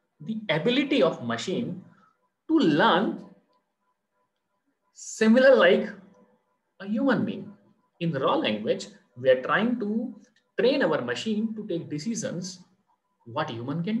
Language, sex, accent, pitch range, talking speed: Hindi, male, native, 160-250 Hz, 115 wpm